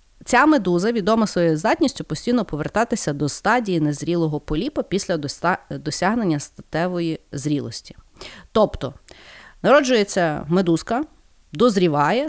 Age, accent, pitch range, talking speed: 30-49, native, 160-245 Hz, 95 wpm